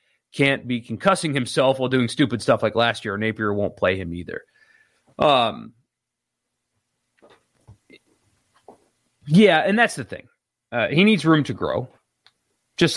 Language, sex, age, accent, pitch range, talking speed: English, male, 30-49, American, 115-155 Hz, 135 wpm